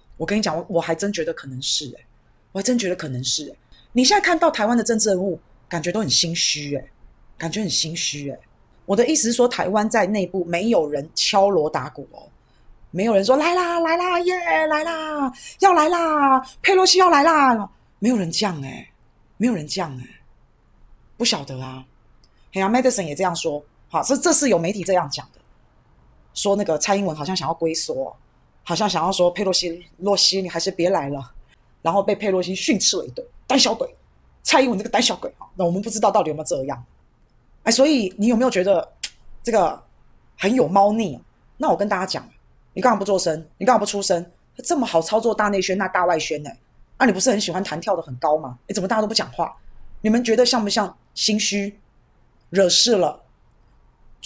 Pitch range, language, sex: 165-240 Hz, Chinese, female